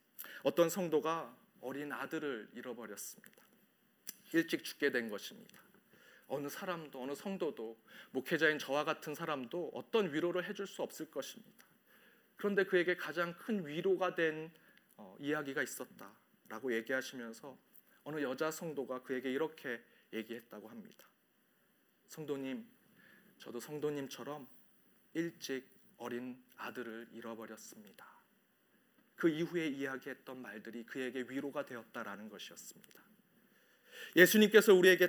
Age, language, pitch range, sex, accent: 40-59, Korean, 150-220 Hz, male, native